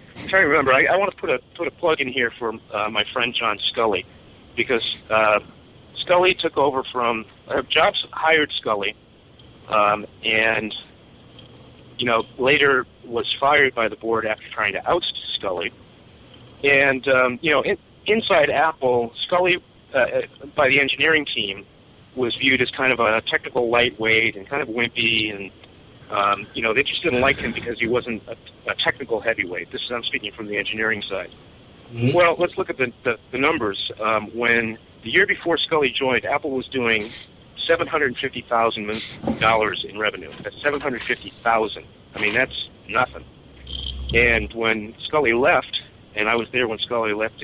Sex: male